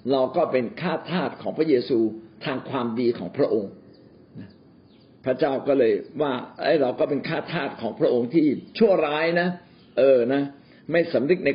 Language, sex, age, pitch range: Thai, male, 60-79, 140-205 Hz